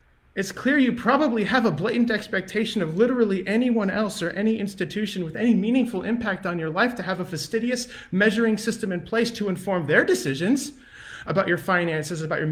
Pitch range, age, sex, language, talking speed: 160-220 Hz, 30-49, male, English, 185 wpm